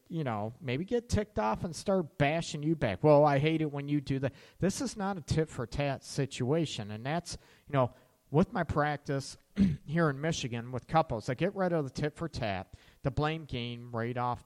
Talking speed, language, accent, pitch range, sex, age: 215 wpm, English, American, 125-160 Hz, male, 40-59